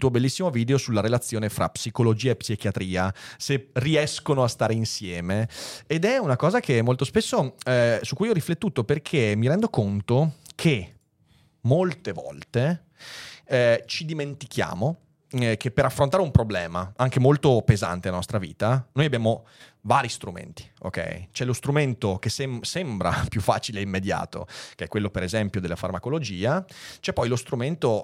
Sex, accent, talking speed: male, native, 160 wpm